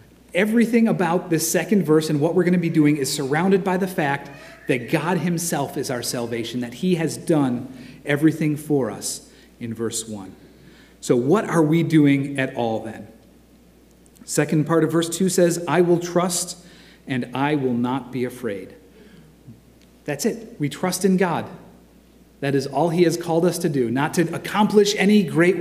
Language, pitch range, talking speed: English, 145-190 Hz, 180 wpm